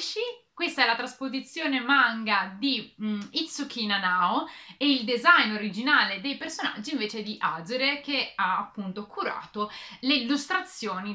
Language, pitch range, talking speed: Italian, 200-270 Hz, 130 wpm